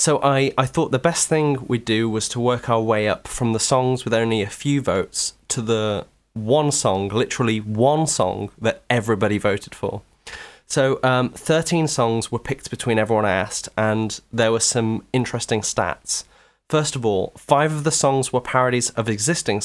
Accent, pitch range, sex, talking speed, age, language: British, 110-135 Hz, male, 185 wpm, 20-39, English